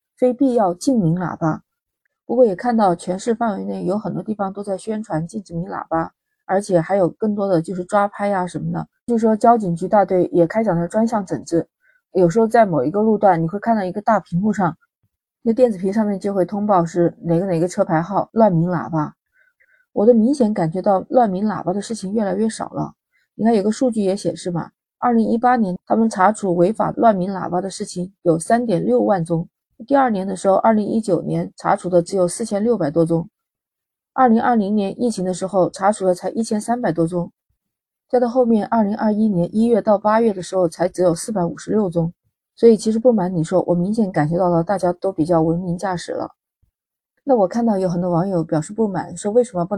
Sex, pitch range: female, 175-225 Hz